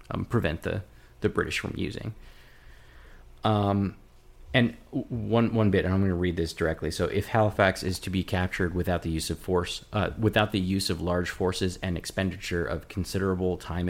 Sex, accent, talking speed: male, American, 185 wpm